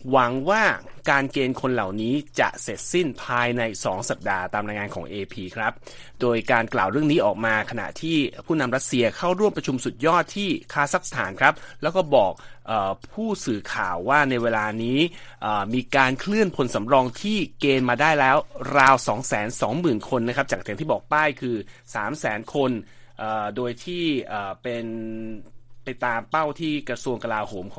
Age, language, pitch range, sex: 30-49, Thai, 110-145 Hz, male